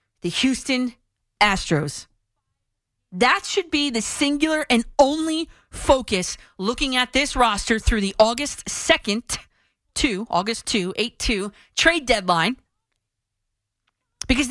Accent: American